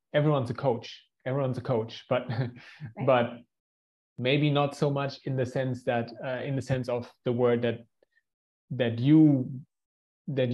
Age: 30-49